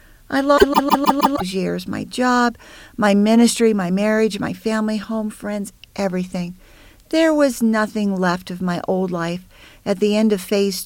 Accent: American